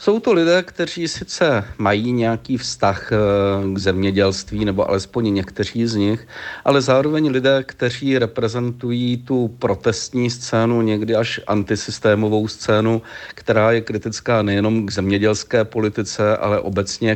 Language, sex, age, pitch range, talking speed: Czech, male, 50-69, 100-115 Hz, 125 wpm